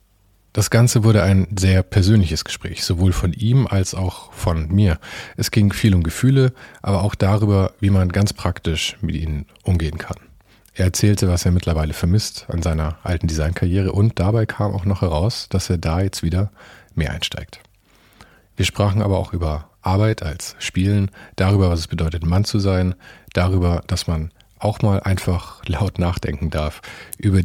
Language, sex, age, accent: German, male, 40-59, German